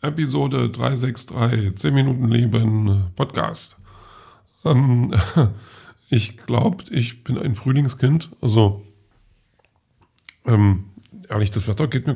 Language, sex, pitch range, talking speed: German, male, 105-130 Hz, 100 wpm